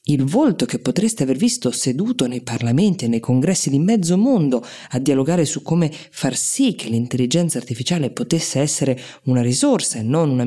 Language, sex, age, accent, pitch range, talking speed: Italian, female, 20-39, native, 125-165 Hz, 180 wpm